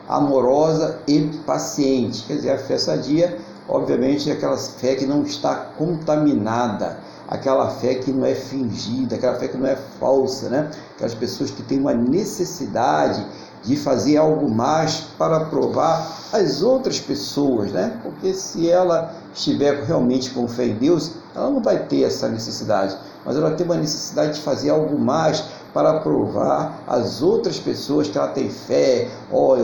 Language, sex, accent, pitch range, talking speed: Portuguese, male, Brazilian, 130-160 Hz, 160 wpm